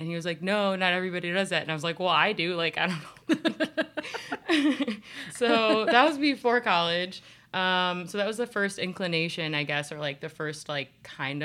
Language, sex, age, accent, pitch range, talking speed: English, female, 20-39, American, 145-180 Hz, 210 wpm